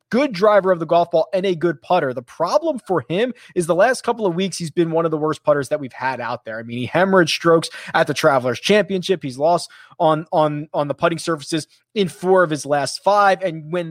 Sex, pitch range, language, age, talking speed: male, 150-210 Hz, English, 30-49, 245 wpm